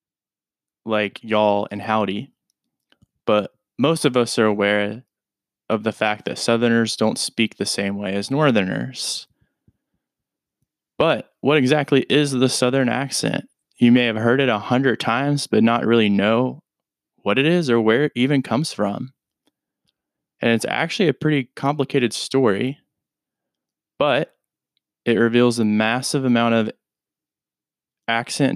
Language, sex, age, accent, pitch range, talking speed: English, male, 20-39, American, 105-125 Hz, 135 wpm